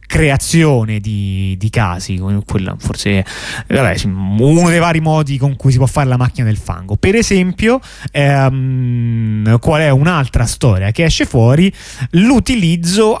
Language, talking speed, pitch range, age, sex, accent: Italian, 140 wpm, 115-160 Hz, 30-49, male, native